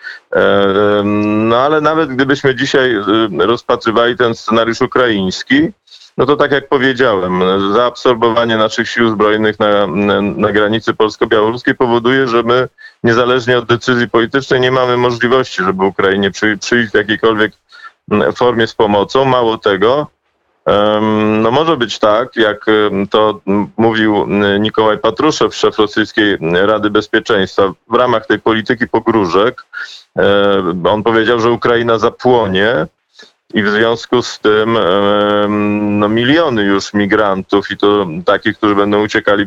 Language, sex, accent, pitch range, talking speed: Polish, male, native, 105-120 Hz, 120 wpm